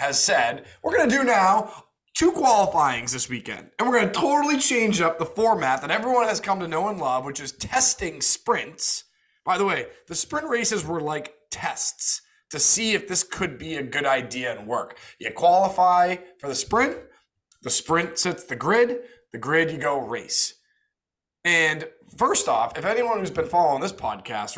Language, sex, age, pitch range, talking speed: English, male, 20-39, 145-220 Hz, 190 wpm